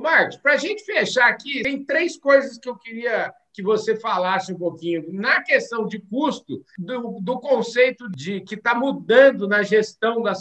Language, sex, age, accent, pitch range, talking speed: Portuguese, male, 60-79, Brazilian, 205-260 Hz, 180 wpm